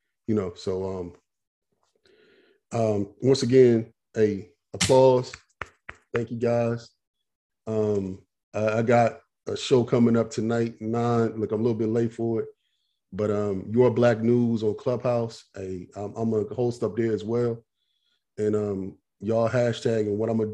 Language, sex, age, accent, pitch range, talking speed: English, male, 30-49, American, 105-120 Hz, 160 wpm